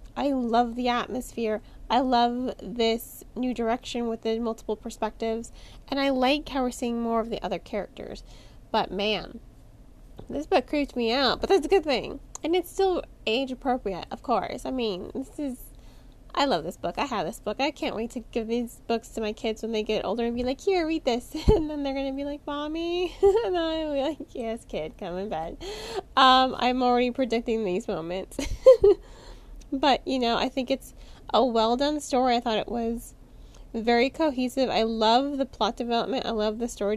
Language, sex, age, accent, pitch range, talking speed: English, female, 20-39, American, 225-275 Hz, 200 wpm